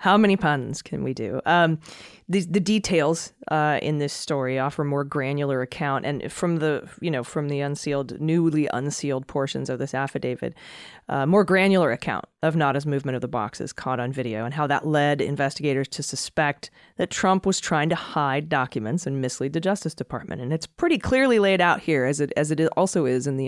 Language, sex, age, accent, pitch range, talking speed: English, female, 30-49, American, 145-180 Hz, 200 wpm